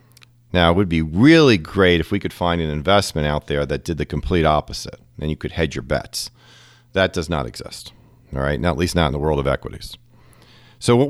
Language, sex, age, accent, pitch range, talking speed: English, male, 40-59, American, 85-120 Hz, 225 wpm